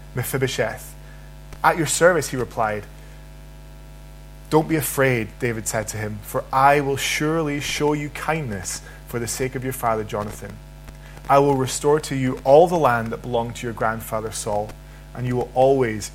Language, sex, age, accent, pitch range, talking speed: English, male, 20-39, British, 110-135 Hz, 165 wpm